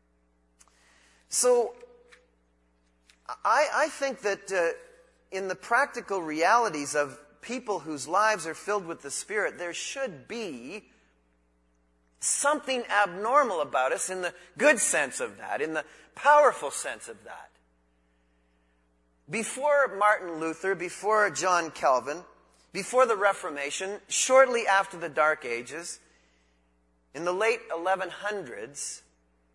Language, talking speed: English, 115 wpm